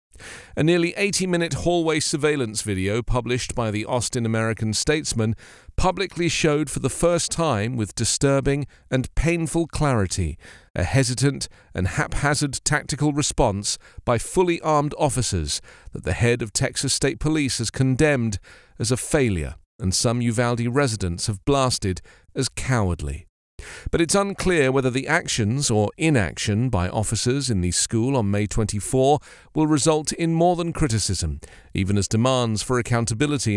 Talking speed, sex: 145 wpm, male